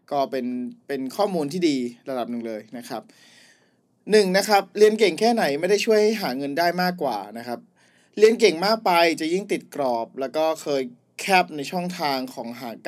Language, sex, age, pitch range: Thai, male, 20-39, 130-180 Hz